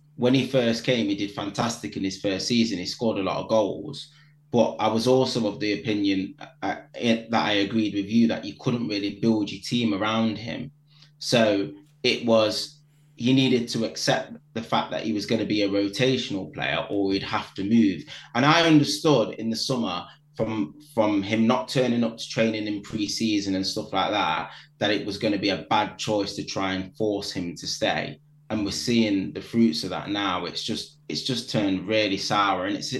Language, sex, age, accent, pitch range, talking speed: English, male, 20-39, British, 100-130 Hz, 210 wpm